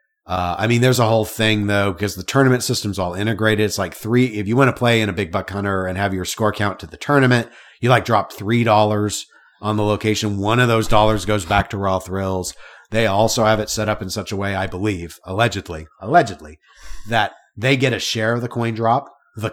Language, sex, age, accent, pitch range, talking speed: English, male, 40-59, American, 100-125 Hz, 230 wpm